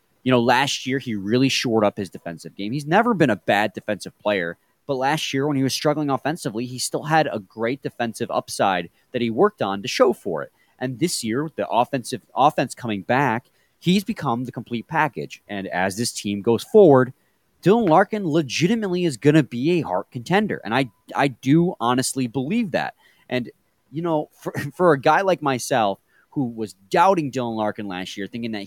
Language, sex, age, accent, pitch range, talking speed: English, male, 30-49, American, 115-165 Hz, 200 wpm